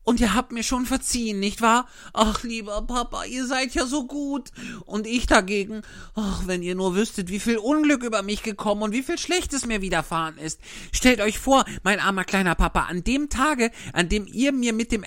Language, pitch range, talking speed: German, 180-255 Hz, 210 wpm